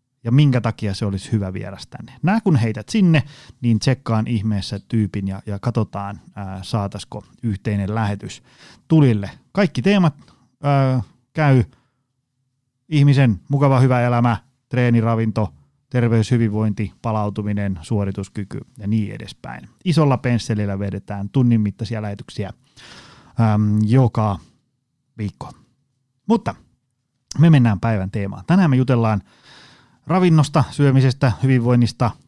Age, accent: 30-49, native